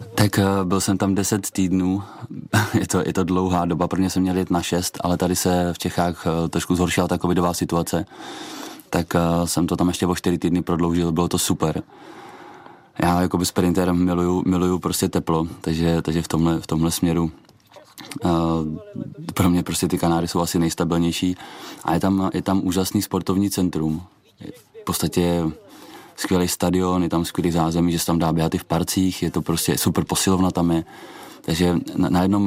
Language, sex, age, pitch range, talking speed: Czech, male, 20-39, 85-95 Hz, 180 wpm